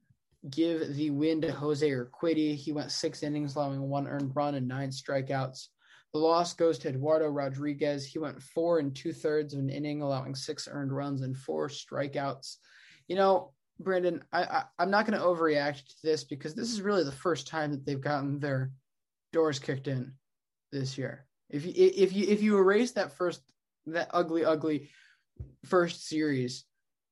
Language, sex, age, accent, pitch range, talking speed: English, male, 20-39, American, 140-165 Hz, 170 wpm